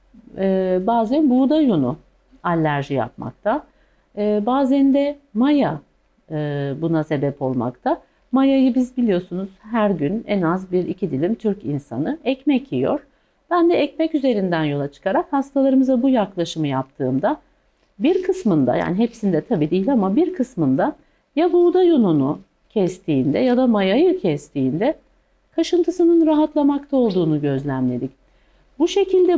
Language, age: Turkish, 50-69